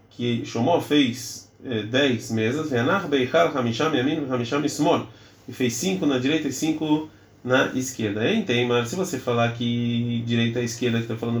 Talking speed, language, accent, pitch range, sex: 155 wpm, Portuguese, Brazilian, 115-140 Hz, male